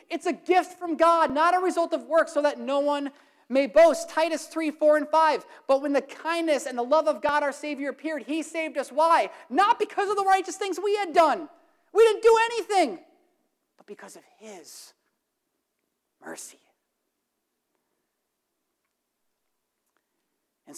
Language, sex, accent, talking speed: English, male, American, 160 wpm